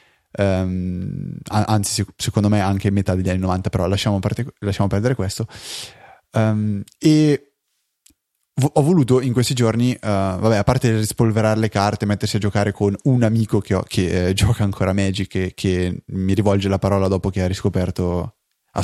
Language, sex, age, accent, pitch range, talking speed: Italian, male, 20-39, native, 95-115 Hz, 180 wpm